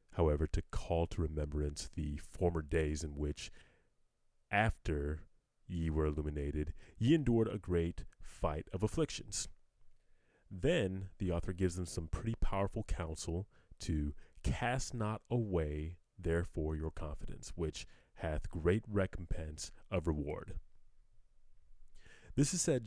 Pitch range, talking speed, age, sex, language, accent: 80-100 Hz, 120 wpm, 30-49, male, English, American